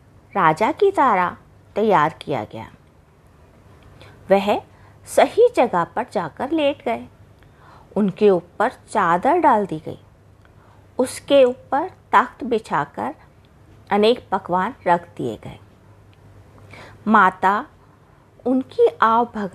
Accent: native